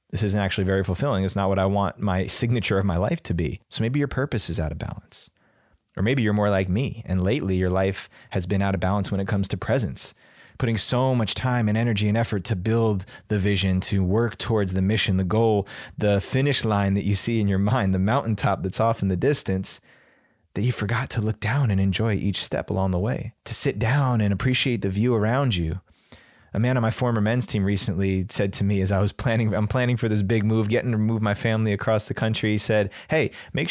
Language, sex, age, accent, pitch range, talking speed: English, male, 20-39, American, 95-115 Hz, 240 wpm